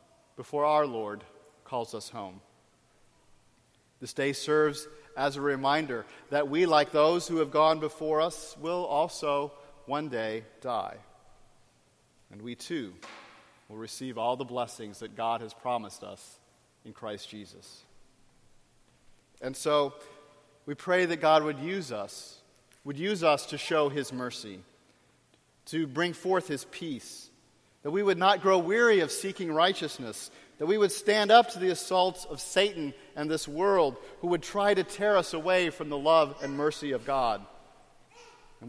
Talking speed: 155 wpm